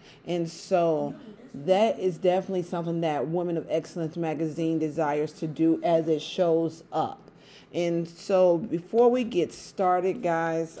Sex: female